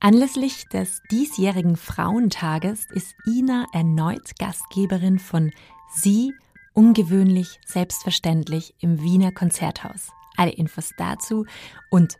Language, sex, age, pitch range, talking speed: German, female, 30-49, 170-200 Hz, 95 wpm